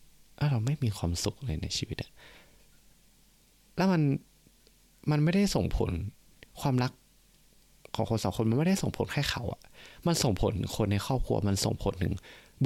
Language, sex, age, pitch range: Thai, male, 20-39, 95-135 Hz